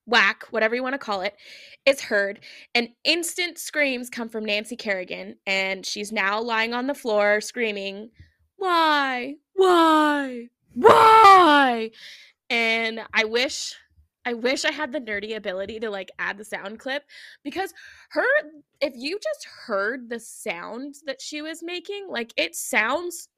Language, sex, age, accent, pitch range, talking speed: English, female, 20-39, American, 215-290 Hz, 150 wpm